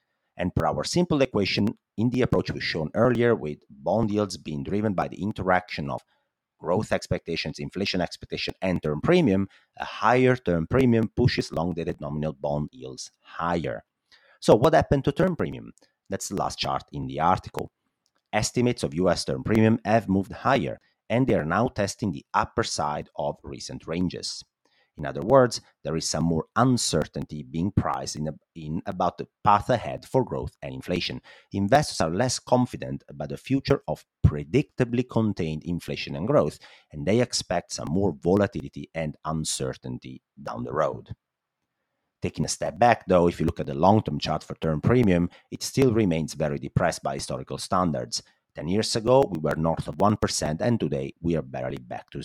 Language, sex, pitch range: English, male, 75-115 Hz